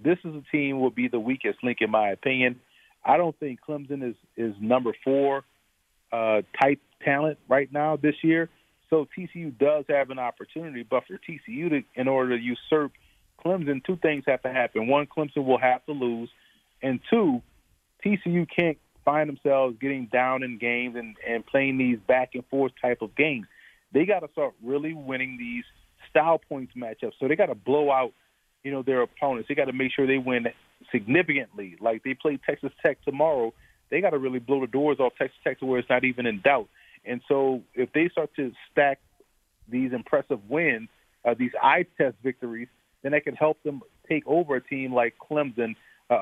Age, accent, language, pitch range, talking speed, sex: 40-59, American, English, 125-150 Hz, 195 wpm, male